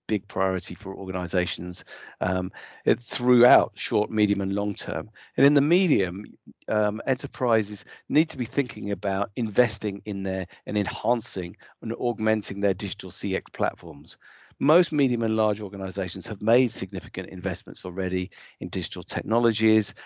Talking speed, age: 140 wpm, 50-69